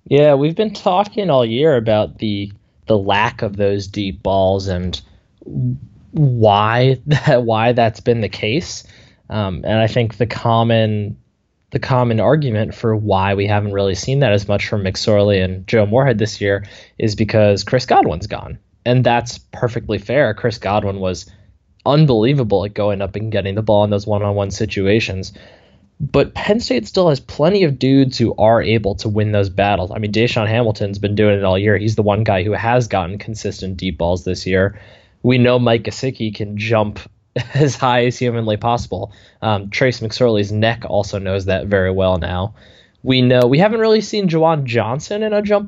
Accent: American